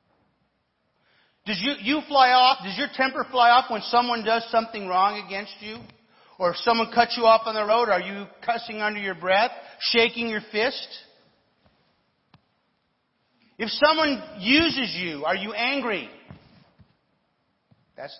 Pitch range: 190-245 Hz